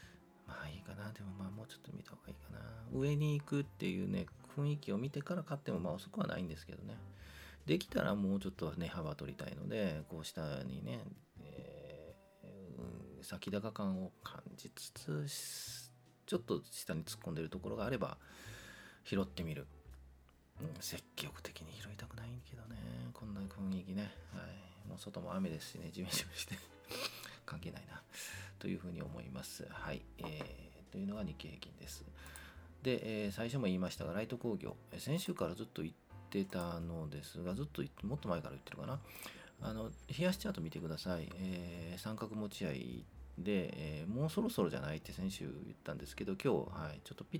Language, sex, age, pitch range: Japanese, male, 40-59, 80-120 Hz